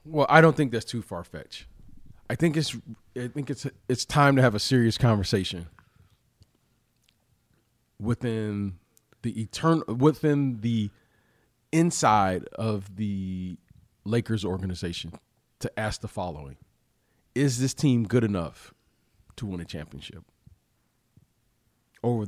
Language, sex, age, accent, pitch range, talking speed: English, male, 40-59, American, 110-150 Hz, 120 wpm